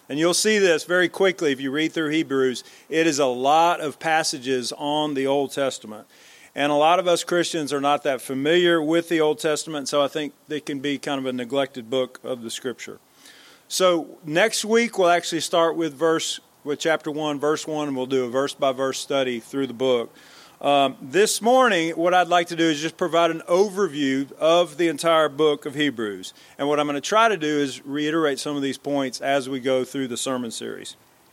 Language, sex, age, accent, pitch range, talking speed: English, male, 40-59, American, 140-175 Hz, 210 wpm